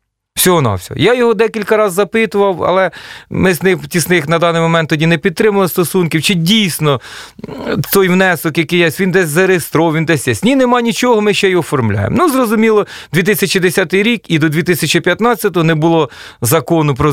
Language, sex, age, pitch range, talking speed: Russian, male, 40-59, 145-185 Hz, 170 wpm